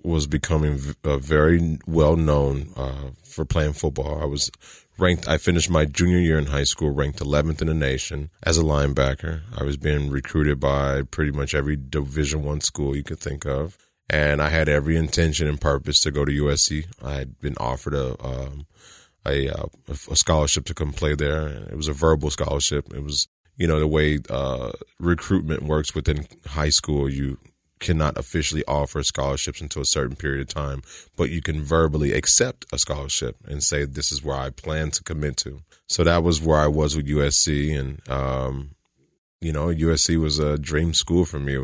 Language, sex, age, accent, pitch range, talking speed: English, male, 20-39, American, 70-80 Hz, 190 wpm